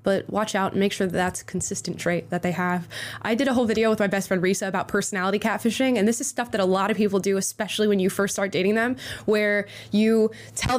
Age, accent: 20-39, American